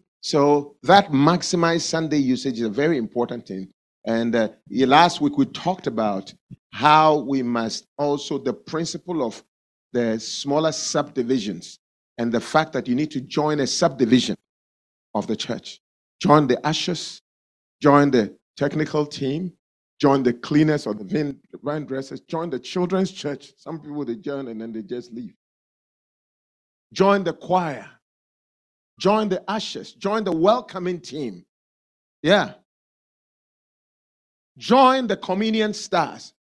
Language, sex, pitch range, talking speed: English, male, 130-190 Hz, 135 wpm